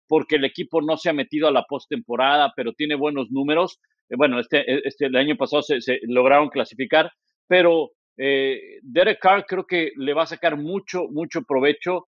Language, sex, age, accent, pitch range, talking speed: Spanish, male, 50-69, Mexican, 140-180 Hz, 180 wpm